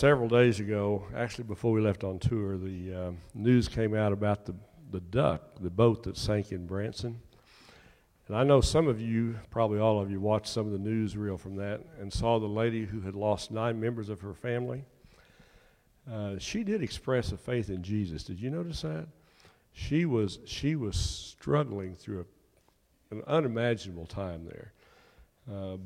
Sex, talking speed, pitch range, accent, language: male, 180 wpm, 95-120 Hz, American, English